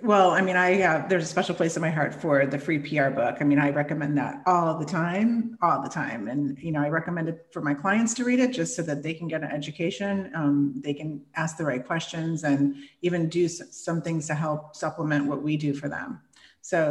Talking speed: 245 wpm